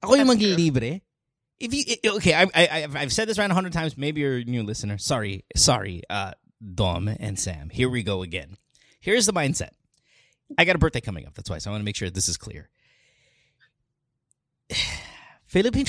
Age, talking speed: 30-49, 180 wpm